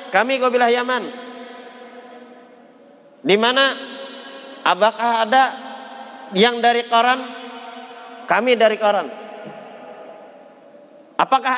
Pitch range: 215-250 Hz